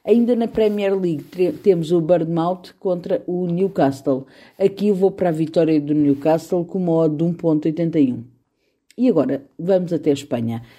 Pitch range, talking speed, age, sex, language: 150-220 Hz, 160 wpm, 50-69, female, Portuguese